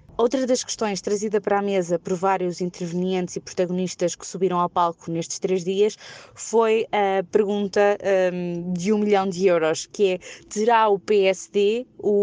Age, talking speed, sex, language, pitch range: 20-39, 165 wpm, female, Portuguese, 180-200 Hz